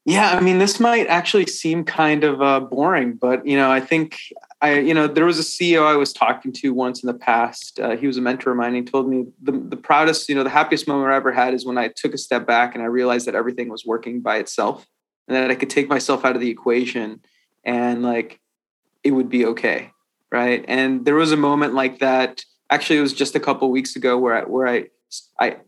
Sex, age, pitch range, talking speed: male, 20-39, 130-150 Hz, 250 wpm